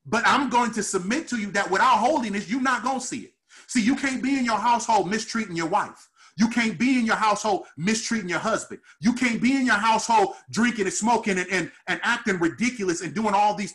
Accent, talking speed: American, 230 wpm